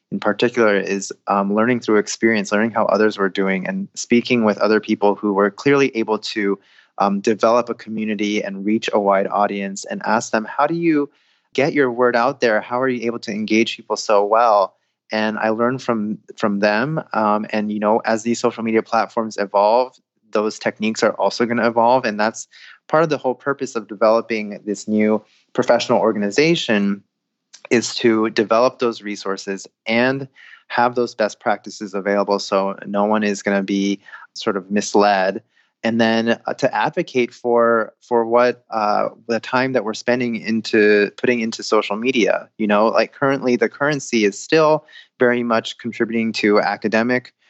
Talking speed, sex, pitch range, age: 175 wpm, male, 105-120 Hz, 20-39